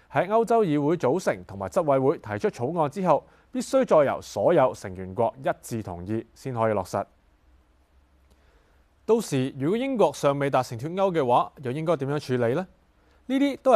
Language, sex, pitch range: Chinese, male, 100-160 Hz